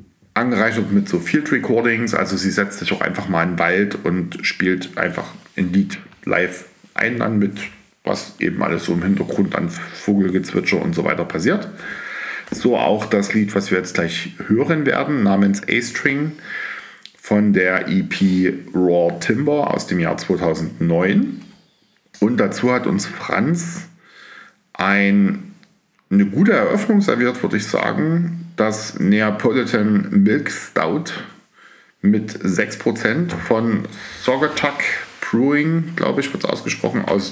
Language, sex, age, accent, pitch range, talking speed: German, male, 50-69, German, 100-150 Hz, 135 wpm